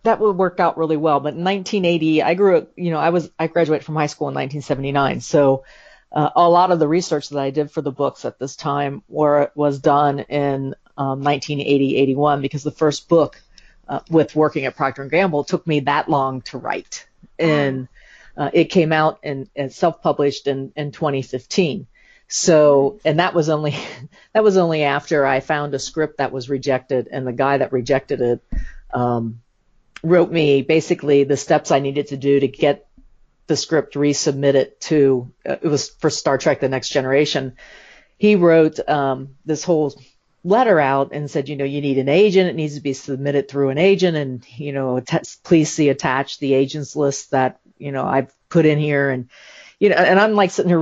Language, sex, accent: English, female, American